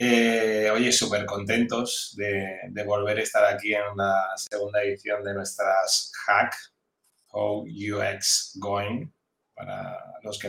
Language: Spanish